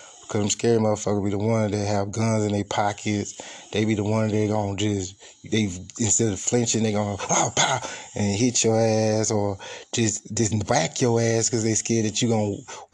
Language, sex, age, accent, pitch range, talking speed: English, male, 20-39, American, 100-110 Hz, 225 wpm